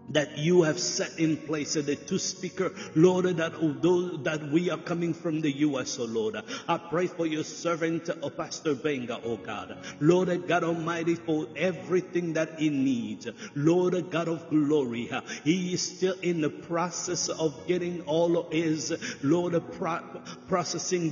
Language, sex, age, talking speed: English, male, 50-69, 160 wpm